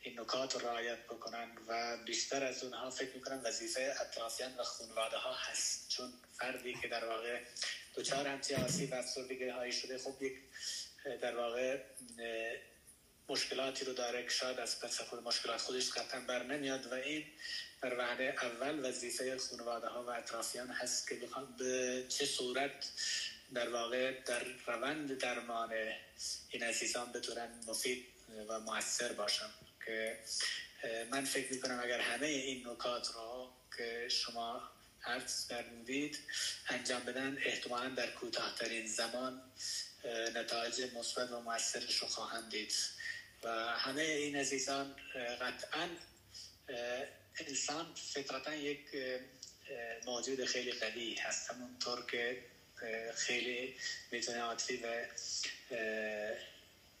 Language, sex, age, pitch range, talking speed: English, male, 20-39, 115-130 Hz, 120 wpm